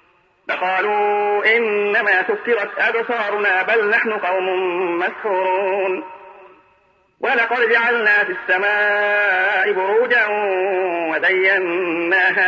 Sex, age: male, 40-59